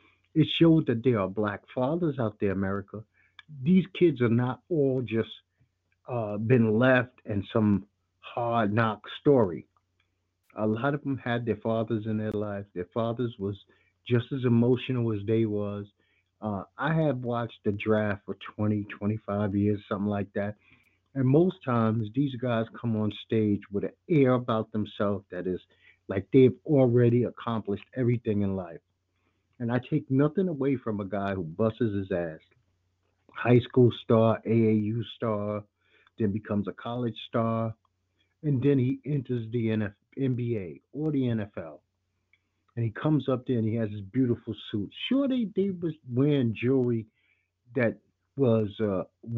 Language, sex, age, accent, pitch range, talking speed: English, male, 50-69, American, 100-125 Hz, 155 wpm